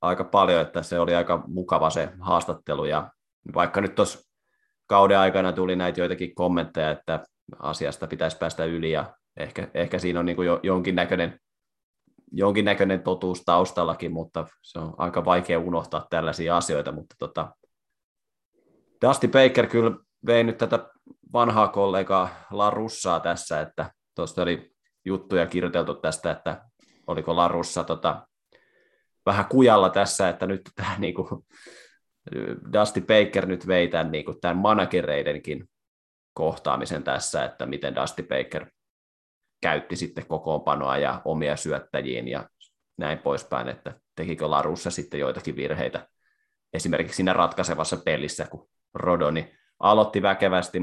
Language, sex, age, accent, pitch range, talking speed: Finnish, male, 20-39, native, 85-100 Hz, 130 wpm